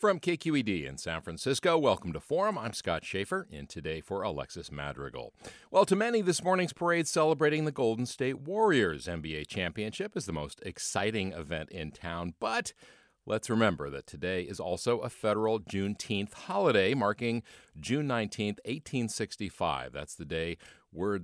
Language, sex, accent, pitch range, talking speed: English, male, American, 85-130 Hz, 155 wpm